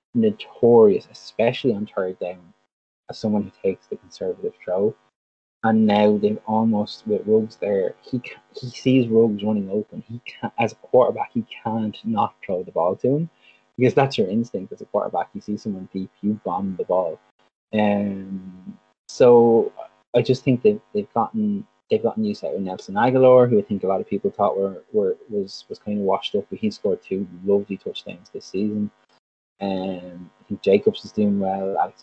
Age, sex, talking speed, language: 20-39, male, 190 wpm, English